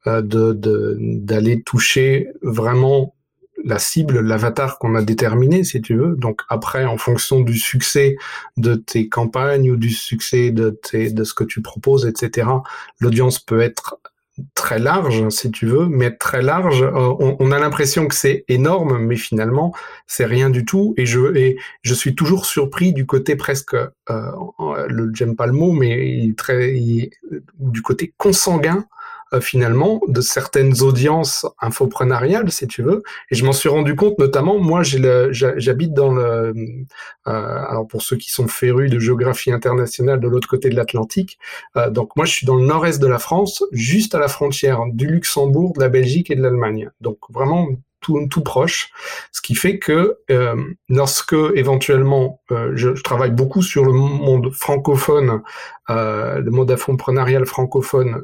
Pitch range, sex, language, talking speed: 120-145 Hz, male, French, 175 wpm